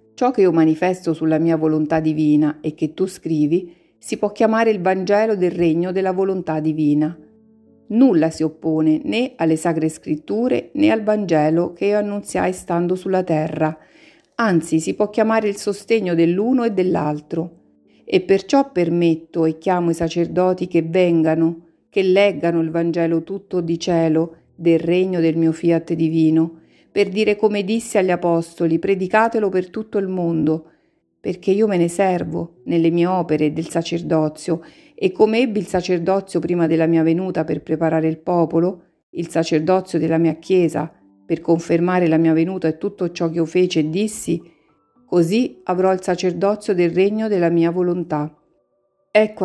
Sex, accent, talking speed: female, native, 160 wpm